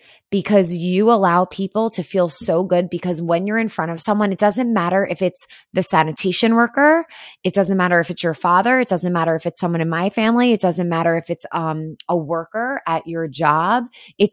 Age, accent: 20-39, American